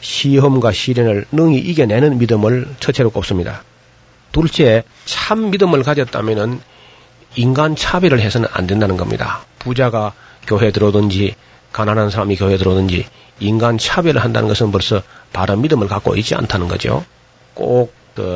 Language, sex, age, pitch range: Korean, male, 40-59, 105-140 Hz